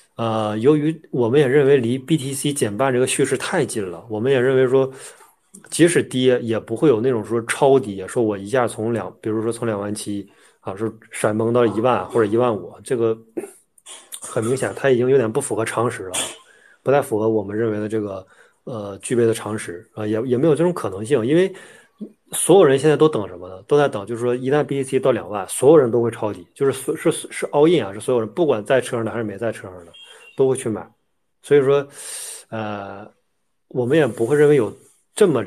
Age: 20-39